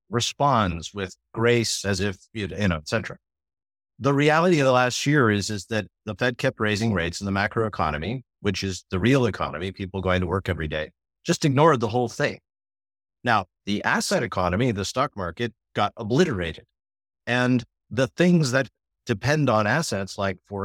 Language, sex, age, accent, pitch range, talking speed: English, male, 50-69, American, 90-120 Hz, 175 wpm